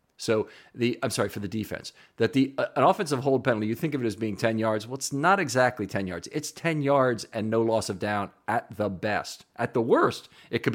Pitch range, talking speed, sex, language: 100-130 Hz, 245 wpm, male, English